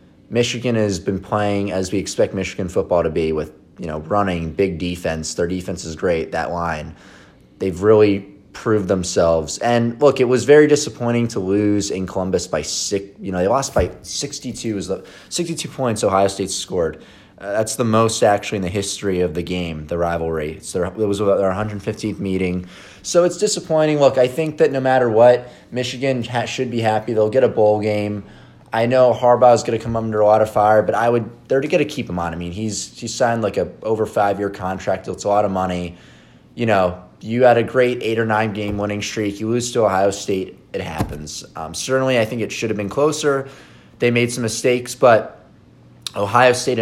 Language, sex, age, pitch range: English, male, 20-39, 95-120 Hz